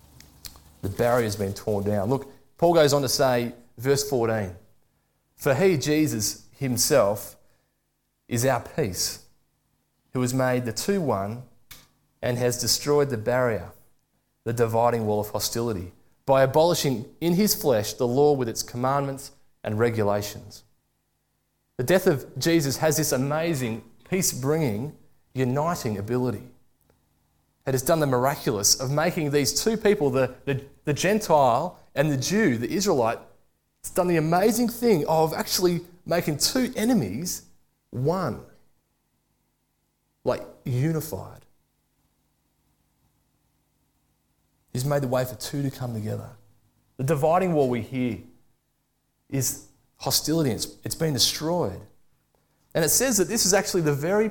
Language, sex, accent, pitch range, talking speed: English, male, Australian, 115-155 Hz, 135 wpm